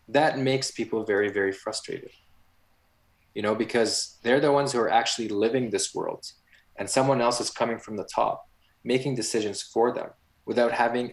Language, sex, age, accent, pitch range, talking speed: English, male, 20-39, Canadian, 100-130 Hz, 175 wpm